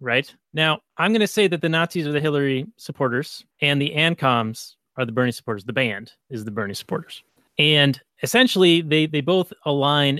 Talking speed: 190 wpm